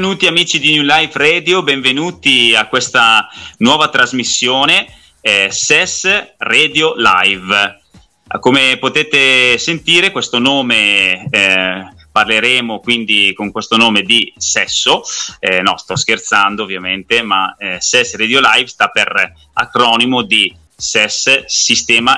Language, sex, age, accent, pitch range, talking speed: Italian, male, 30-49, native, 100-130 Hz, 120 wpm